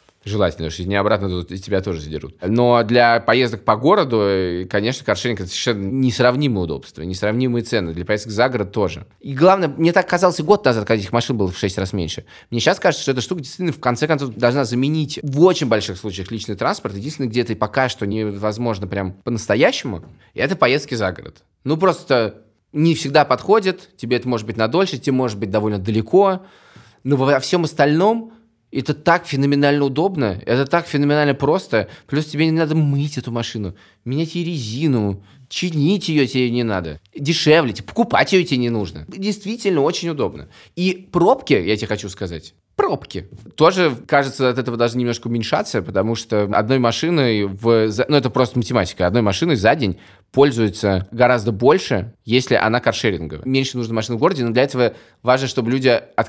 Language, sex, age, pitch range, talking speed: Russian, male, 20-39, 105-145 Hz, 180 wpm